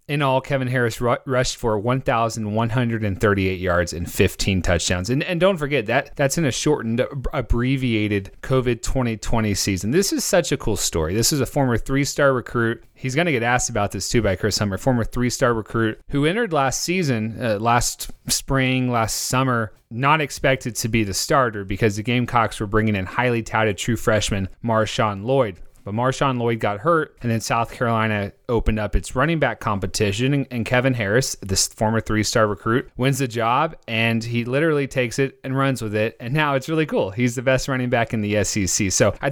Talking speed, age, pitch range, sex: 195 wpm, 30-49, 110-130 Hz, male